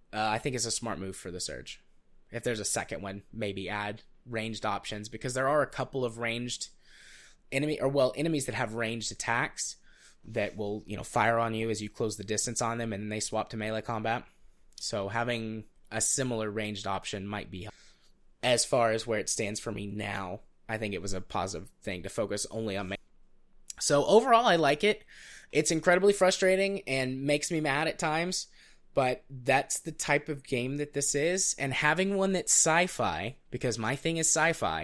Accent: American